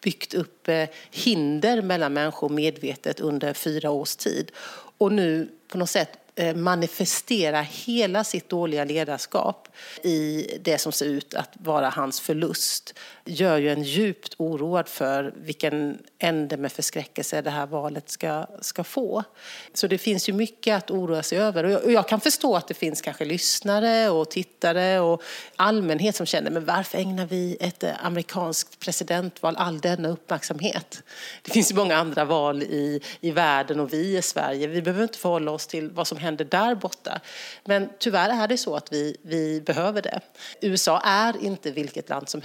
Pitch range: 155-200 Hz